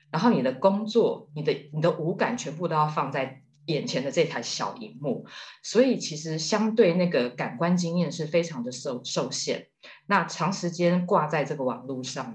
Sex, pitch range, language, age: female, 145-195 Hz, Chinese, 20-39